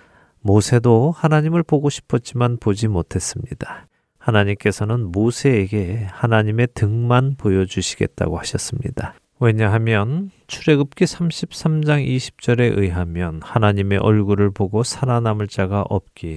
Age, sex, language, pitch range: 40-59, male, Korean, 95-130 Hz